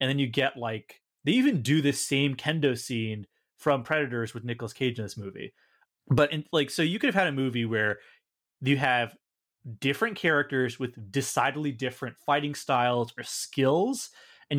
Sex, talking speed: male, 175 wpm